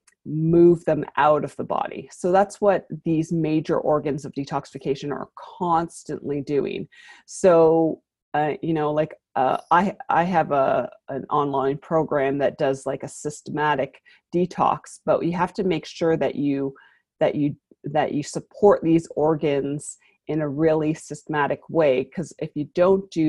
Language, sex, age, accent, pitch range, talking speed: English, female, 30-49, American, 145-165 Hz, 155 wpm